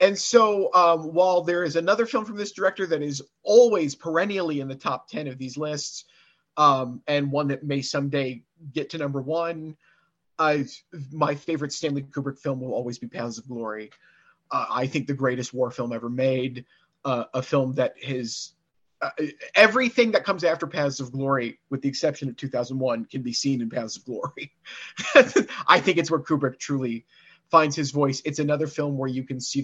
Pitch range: 130-165 Hz